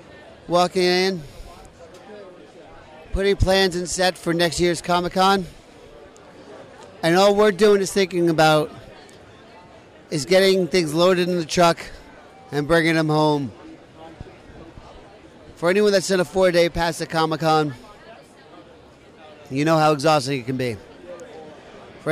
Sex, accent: male, American